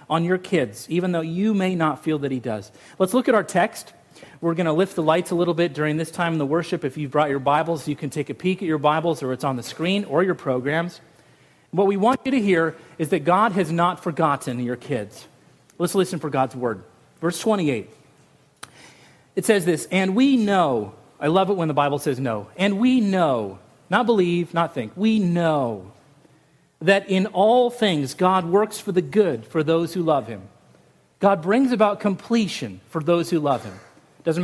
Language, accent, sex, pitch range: English, American, male, 145-195 Hz